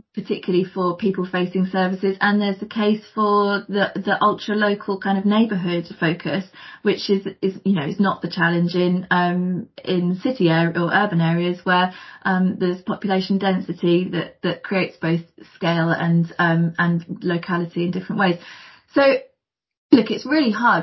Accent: British